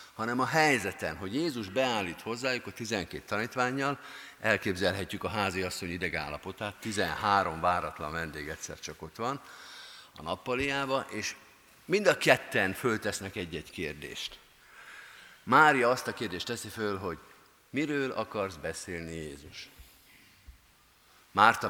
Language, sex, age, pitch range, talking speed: Hungarian, male, 50-69, 95-130 Hz, 120 wpm